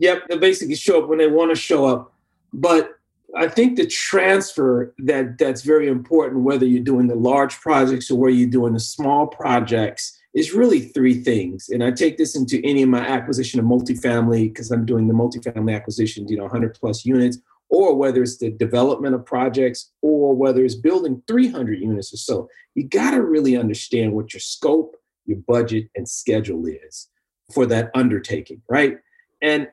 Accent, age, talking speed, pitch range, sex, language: American, 40-59, 185 wpm, 120-170 Hz, male, English